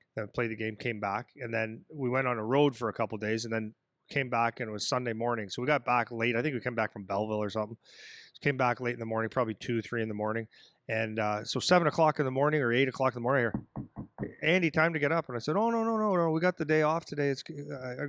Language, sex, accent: English, male, American